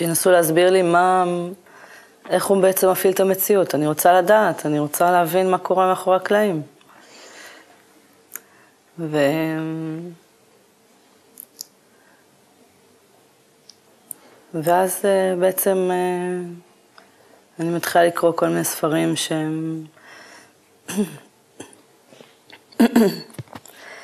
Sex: female